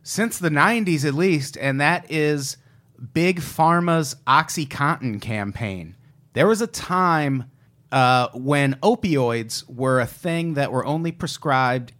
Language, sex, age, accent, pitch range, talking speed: English, male, 30-49, American, 125-165 Hz, 130 wpm